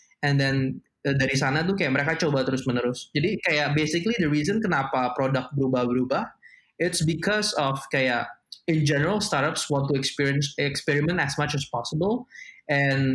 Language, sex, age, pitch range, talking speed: Indonesian, male, 20-39, 135-165 Hz, 155 wpm